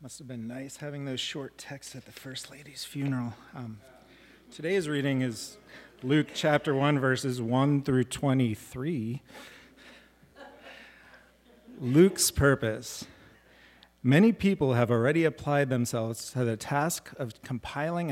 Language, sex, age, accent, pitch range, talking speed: English, male, 40-59, American, 120-145 Hz, 125 wpm